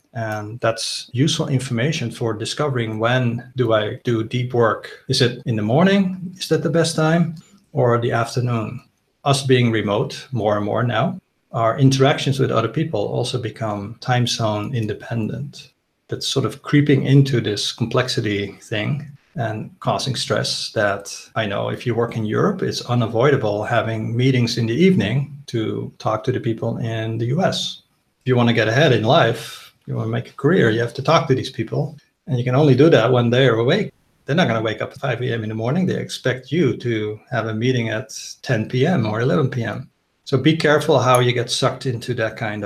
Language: English